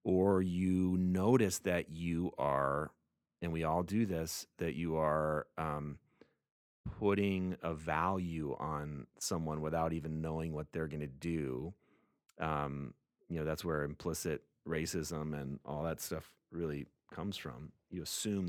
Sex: male